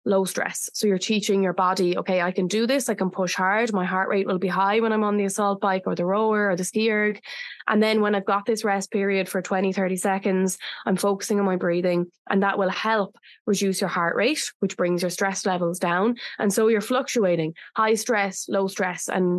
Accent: Irish